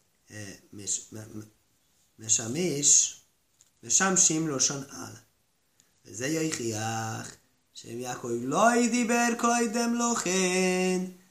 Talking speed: 70 wpm